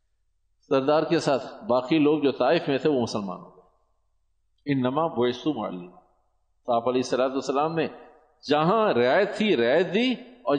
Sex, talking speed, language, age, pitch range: male, 145 wpm, Urdu, 50-69, 120-175 Hz